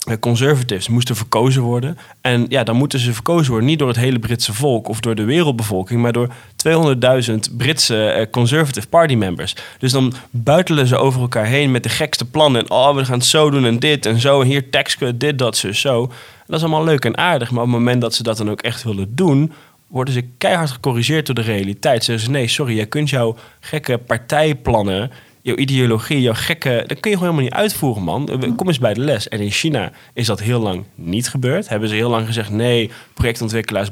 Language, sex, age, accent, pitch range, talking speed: Dutch, male, 20-39, Dutch, 115-140 Hz, 215 wpm